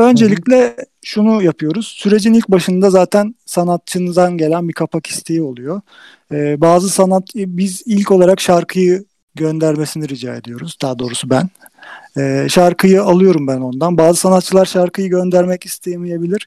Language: Turkish